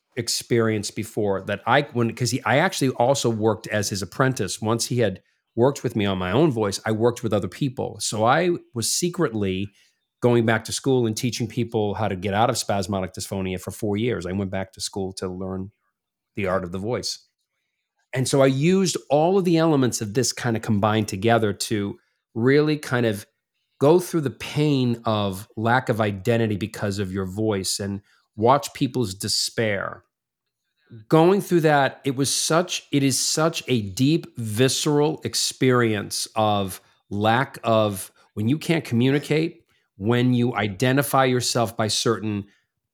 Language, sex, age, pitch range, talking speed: English, male, 40-59, 110-135 Hz, 170 wpm